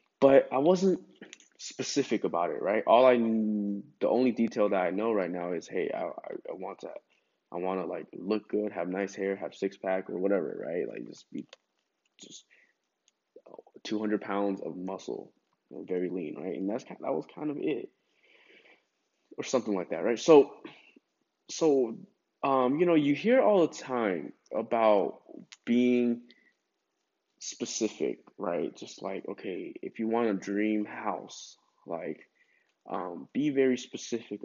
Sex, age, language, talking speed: male, 20-39, English, 160 wpm